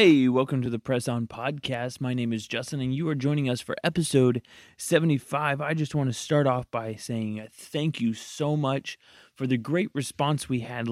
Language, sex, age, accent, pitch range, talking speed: English, male, 30-49, American, 115-140 Hz, 205 wpm